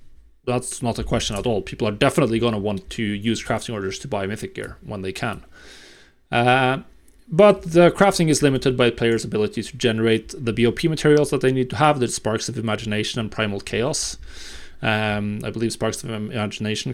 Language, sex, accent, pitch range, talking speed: English, male, Norwegian, 105-135 Hz, 195 wpm